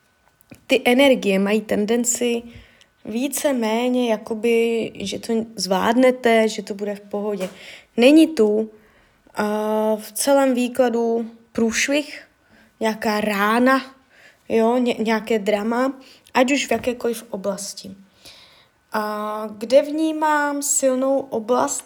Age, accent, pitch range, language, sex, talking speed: 20-39, native, 215-260 Hz, Czech, female, 95 wpm